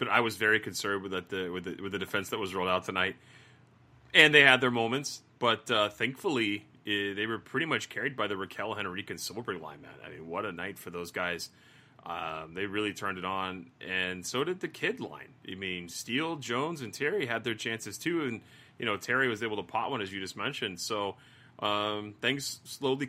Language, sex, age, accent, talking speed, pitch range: English, male, 30-49, American, 225 wpm, 100-130 Hz